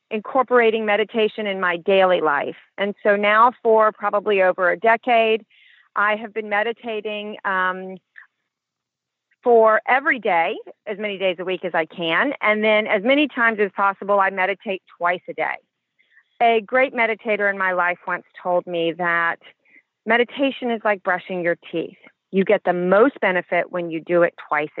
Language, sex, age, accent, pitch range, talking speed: English, female, 40-59, American, 195-240 Hz, 165 wpm